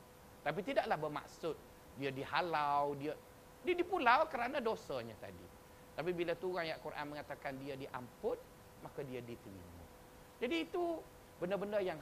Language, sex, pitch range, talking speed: Malay, male, 120-155 Hz, 130 wpm